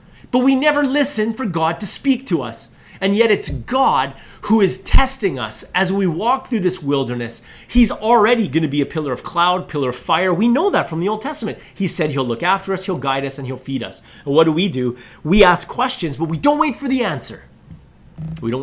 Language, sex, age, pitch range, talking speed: English, male, 30-49, 135-200 Hz, 235 wpm